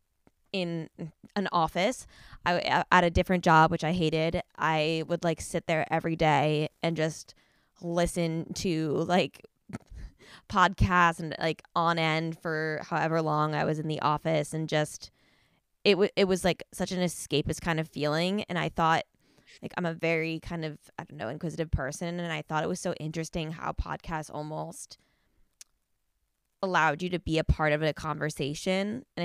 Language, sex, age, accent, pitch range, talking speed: English, female, 10-29, American, 155-175 Hz, 165 wpm